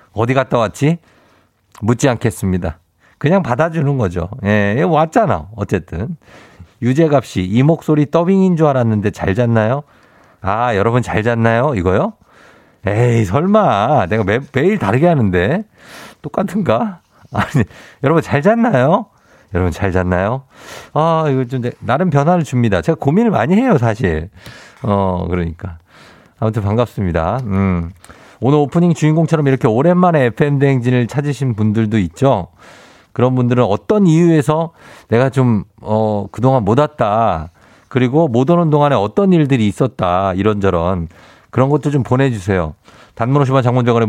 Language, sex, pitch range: Korean, male, 100-150 Hz